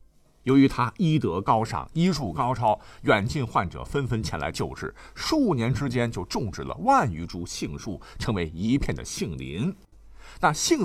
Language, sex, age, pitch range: Chinese, male, 50-69, 105-165 Hz